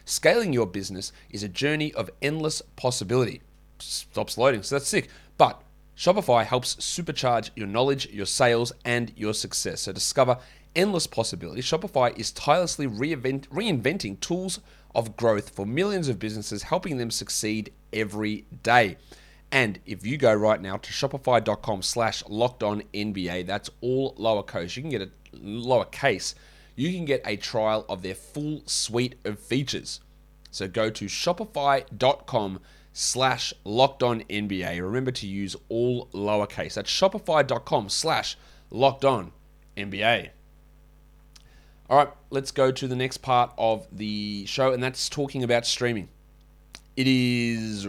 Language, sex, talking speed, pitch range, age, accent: English, male, 145 wpm, 105-140 Hz, 30-49, Australian